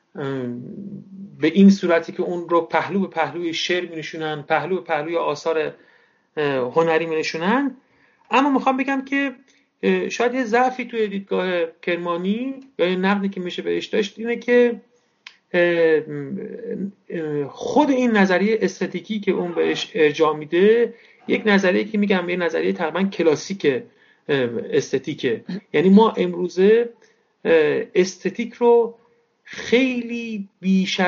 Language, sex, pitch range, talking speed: Persian, male, 165-225 Hz, 120 wpm